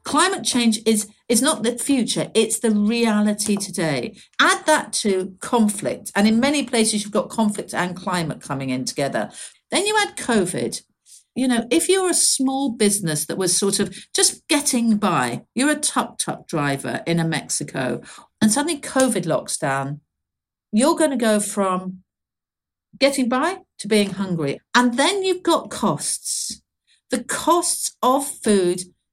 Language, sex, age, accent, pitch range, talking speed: English, female, 50-69, British, 195-275 Hz, 155 wpm